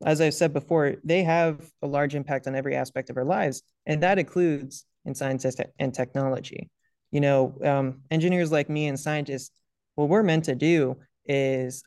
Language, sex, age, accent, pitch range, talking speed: English, male, 20-39, American, 135-160 Hz, 180 wpm